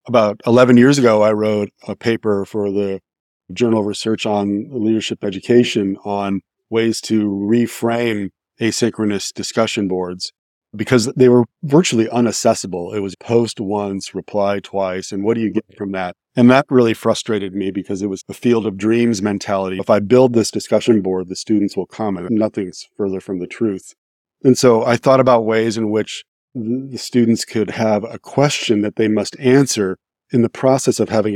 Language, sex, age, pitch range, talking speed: English, male, 40-59, 100-125 Hz, 180 wpm